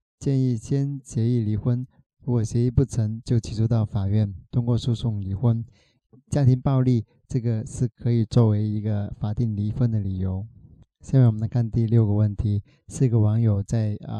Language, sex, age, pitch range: Chinese, male, 20-39, 110-130 Hz